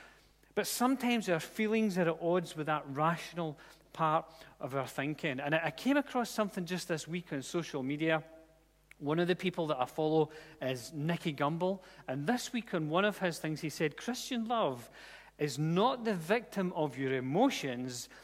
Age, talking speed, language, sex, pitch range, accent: 40-59, 180 wpm, English, male, 145-200 Hz, British